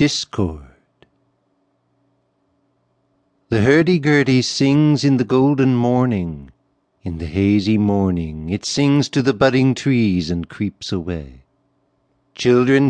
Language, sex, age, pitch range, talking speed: English, male, 60-79, 105-140 Hz, 105 wpm